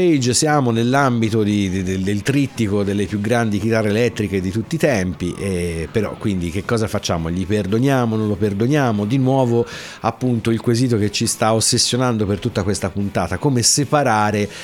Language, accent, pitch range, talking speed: Italian, native, 95-120 Hz, 165 wpm